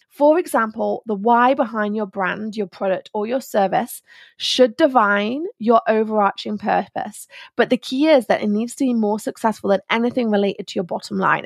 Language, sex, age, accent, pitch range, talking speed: English, female, 20-39, British, 210-265 Hz, 185 wpm